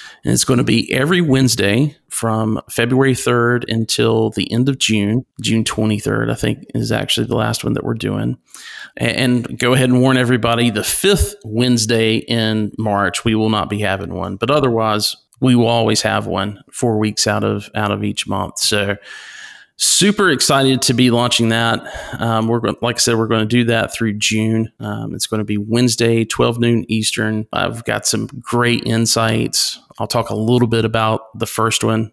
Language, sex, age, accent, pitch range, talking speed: English, male, 40-59, American, 105-120 Hz, 190 wpm